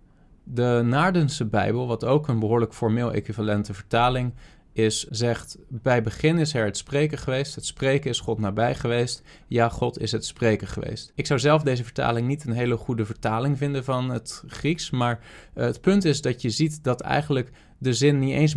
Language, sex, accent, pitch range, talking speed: Dutch, male, Dutch, 115-145 Hz, 185 wpm